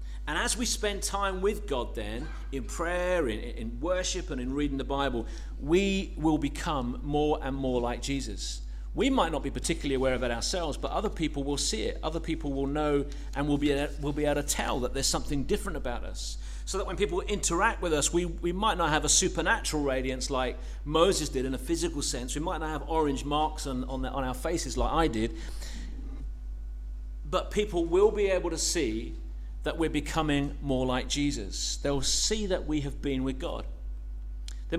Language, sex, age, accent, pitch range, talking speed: English, male, 40-59, British, 120-160 Hz, 205 wpm